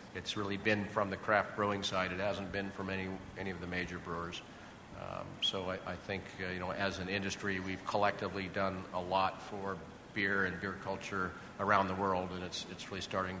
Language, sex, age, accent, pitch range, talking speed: English, male, 50-69, American, 95-100 Hz, 210 wpm